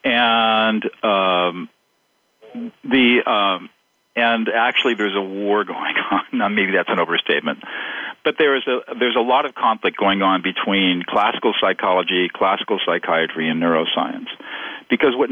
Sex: male